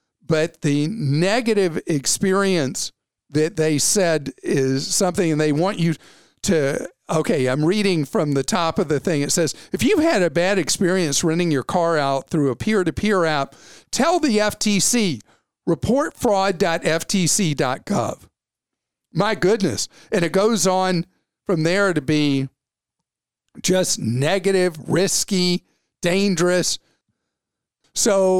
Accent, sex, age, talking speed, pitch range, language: American, male, 50-69, 125 wpm, 140-185 Hz, English